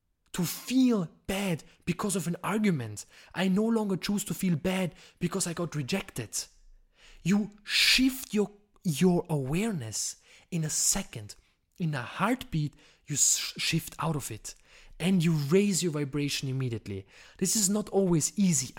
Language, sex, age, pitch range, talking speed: English, male, 20-39, 140-205 Hz, 145 wpm